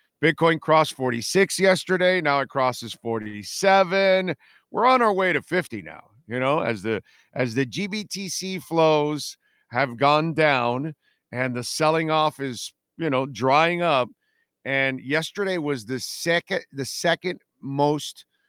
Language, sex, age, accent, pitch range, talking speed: English, male, 50-69, American, 120-150 Hz, 140 wpm